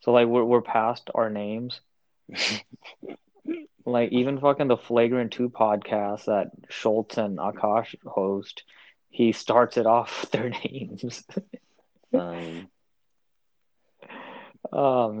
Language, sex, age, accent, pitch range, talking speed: English, male, 20-39, American, 105-120 Hz, 105 wpm